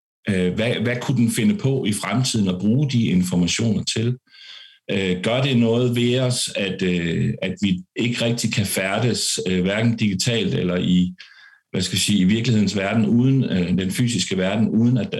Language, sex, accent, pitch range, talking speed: Danish, male, native, 105-140 Hz, 165 wpm